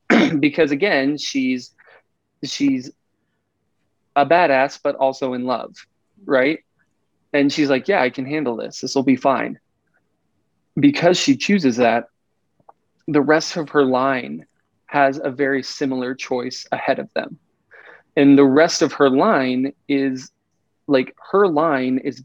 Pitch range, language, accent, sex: 125-145 Hz, English, American, male